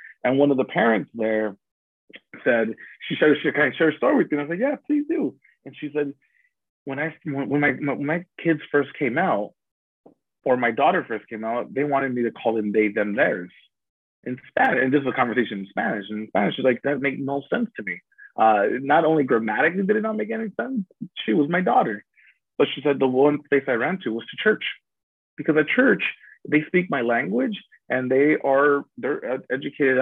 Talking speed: 220 wpm